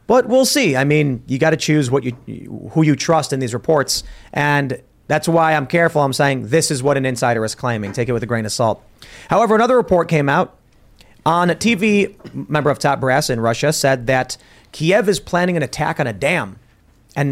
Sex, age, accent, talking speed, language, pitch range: male, 30-49, American, 220 wpm, English, 125-165 Hz